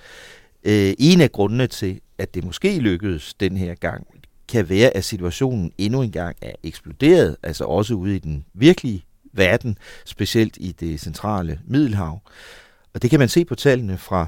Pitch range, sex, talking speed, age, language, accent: 85-115 Hz, male, 165 wpm, 40-59, Danish, native